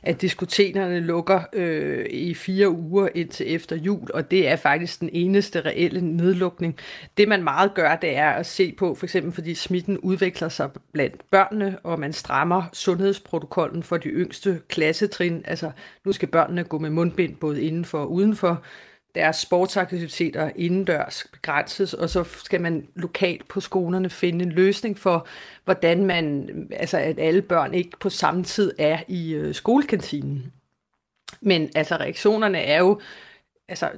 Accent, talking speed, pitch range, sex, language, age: native, 155 wpm, 165-190 Hz, female, Danish, 30-49